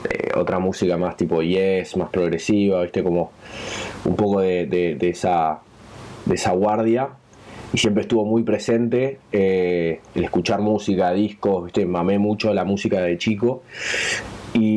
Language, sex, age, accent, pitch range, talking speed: Spanish, male, 20-39, Argentinian, 95-115 Hz, 150 wpm